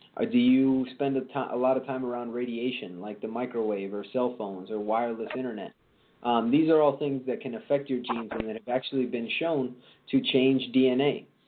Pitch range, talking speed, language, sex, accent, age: 115-130 Hz, 200 wpm, English, male, American, 30-49